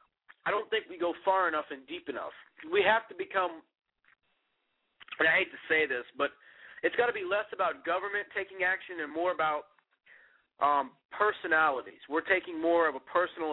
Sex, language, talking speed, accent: male, English, 180 wpm, American